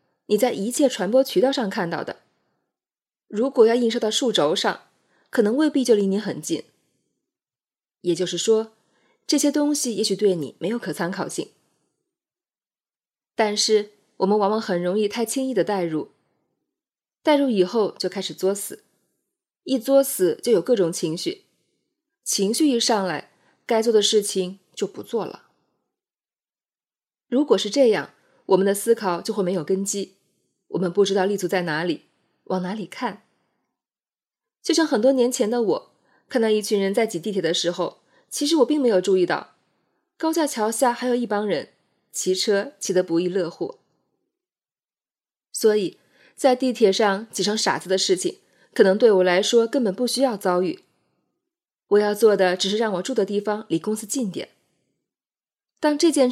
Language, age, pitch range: Chinese, 20-39, 190-260 Hz